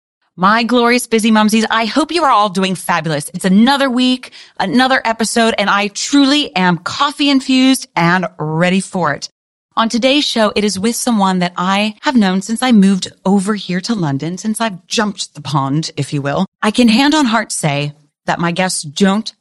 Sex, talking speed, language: female, 190 wpm, English